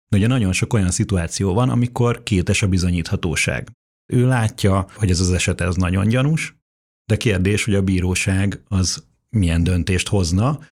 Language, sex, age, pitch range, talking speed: Hungarian, male, 30-49, 95-110 Hz, 160 wpm